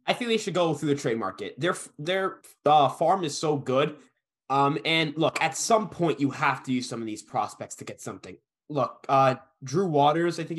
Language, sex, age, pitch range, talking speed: English, male, 20-39, 125-160 Hz, 220 wpm